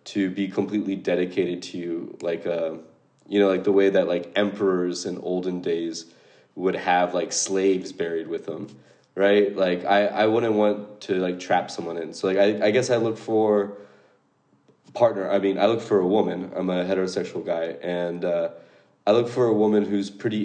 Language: English